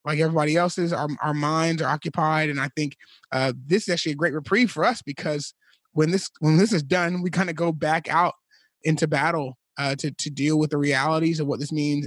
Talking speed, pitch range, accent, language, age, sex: 230 wpm, 150-185 Hz, American, English, 30-49, male